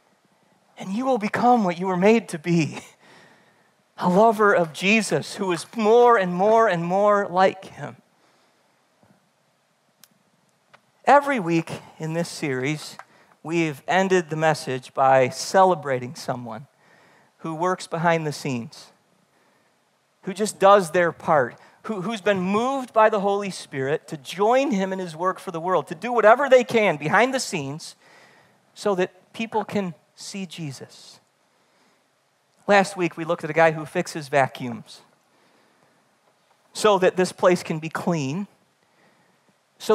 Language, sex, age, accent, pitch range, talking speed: English, male, 40-59, American, 150-205 Hz, 140 wpm